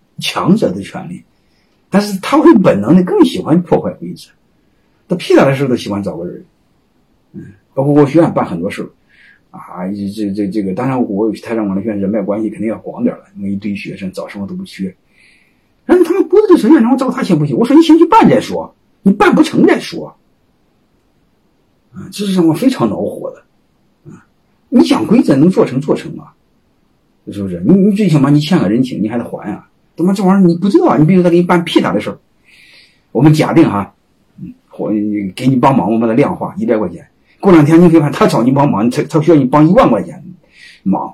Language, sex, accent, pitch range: Chinese, male, native, 120-195 Hz